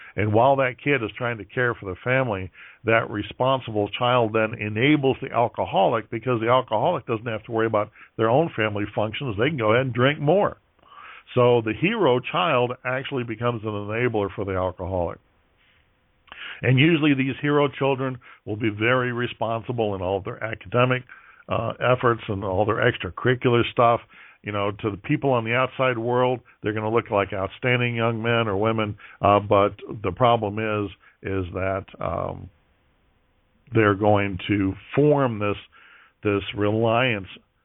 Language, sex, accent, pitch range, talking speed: English, male, American, 100-125 Hz, 165 wpm